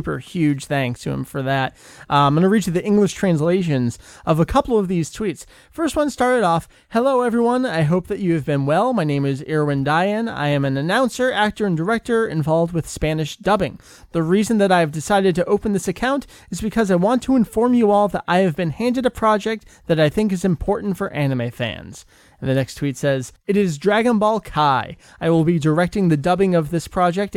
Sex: male